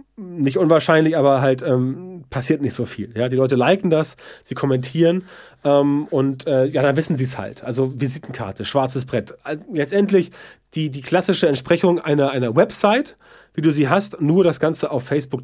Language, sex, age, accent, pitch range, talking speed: German, male, 30-49, German, 125-165 Hz, 185 wpm